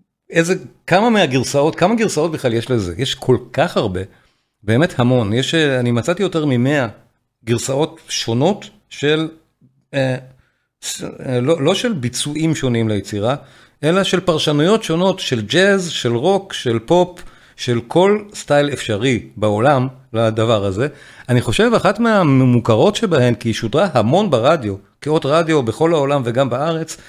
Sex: male